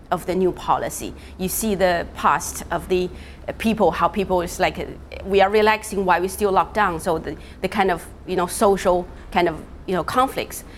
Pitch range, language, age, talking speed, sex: 175-205 Hz, English, 30-49, 200 wpm, female